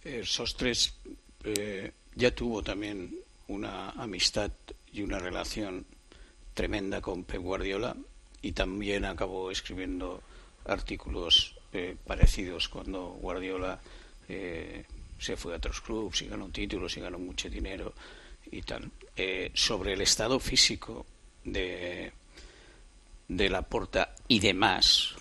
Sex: male